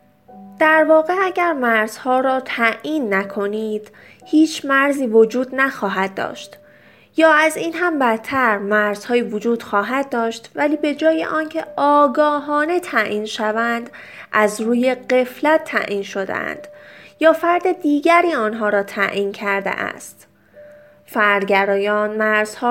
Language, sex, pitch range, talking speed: Persian, female, 215-295 Hz, 115 wpm